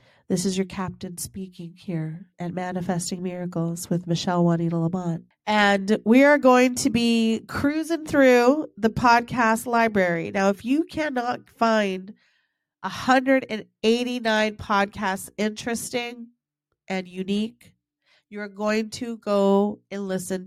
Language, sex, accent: English, female, American